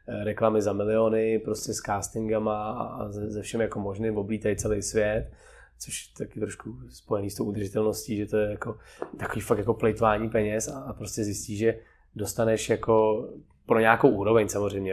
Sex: male